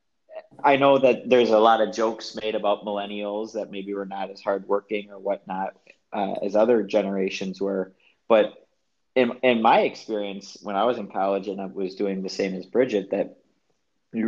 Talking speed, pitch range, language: 190 wpm, 100-115 Hz, English